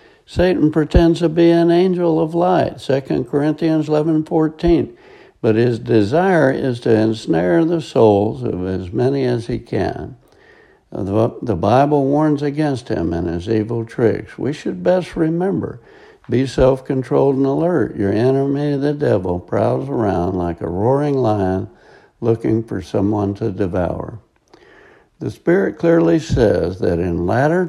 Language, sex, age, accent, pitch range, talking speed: English, male, 60-79, American, 105-155 Hz, 140 wpm